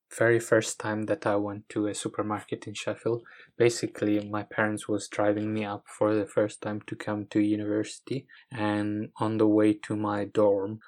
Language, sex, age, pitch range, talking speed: English, male, 20-39, 105-110 Hz, 180 wpm